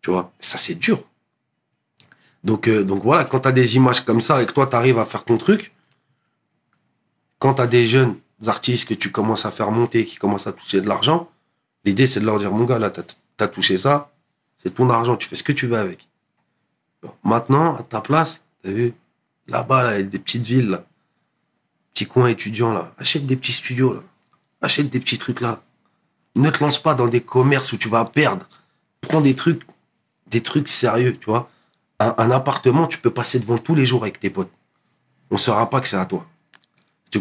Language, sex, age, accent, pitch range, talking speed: French, male, 40-59, French, 110-140 Hz, 220 wpm